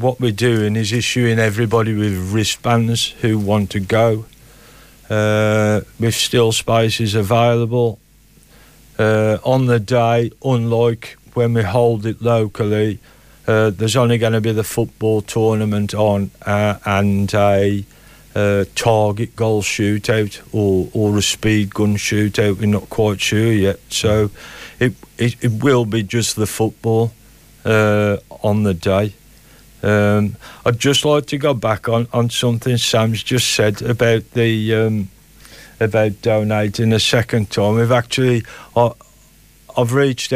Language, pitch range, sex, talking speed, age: English, 105-120 Hz, male, 140 wpm, 50-69